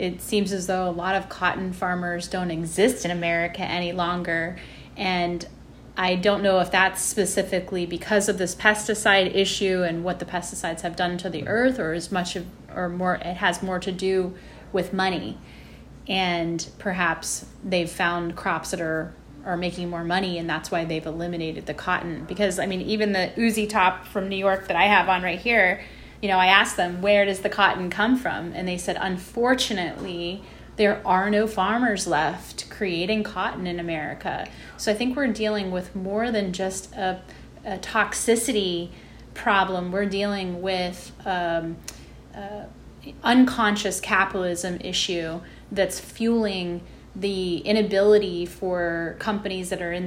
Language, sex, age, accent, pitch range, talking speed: English, female, 30-49, American, 175-200 Hz, 165 wpm